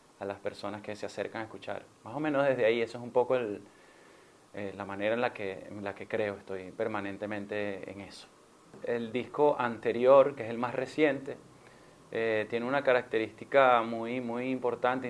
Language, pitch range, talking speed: Spanish, 110-130 Hz, 185 wpm